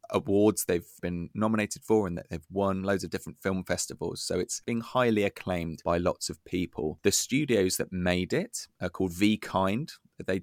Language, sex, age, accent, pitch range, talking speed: English, male, 20-39, British, 90-105 Hz, 190 wpm